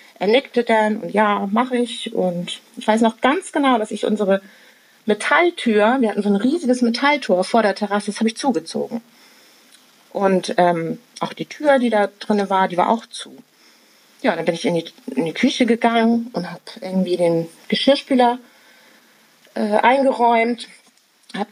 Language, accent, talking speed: German, German, 170 wpm